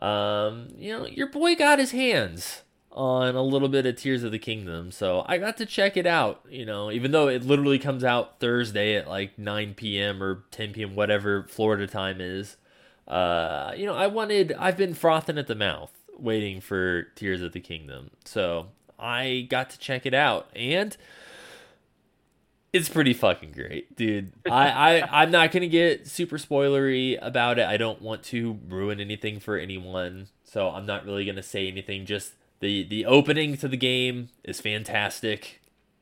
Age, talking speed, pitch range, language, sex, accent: 20-39, 180 wpm, 95-130 Hz, English, male, American